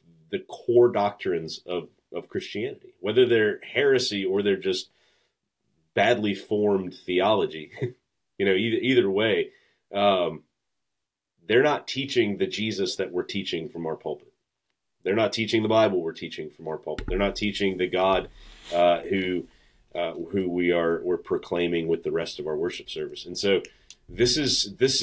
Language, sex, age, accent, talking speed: English, male, 30-49, American, 160 wpm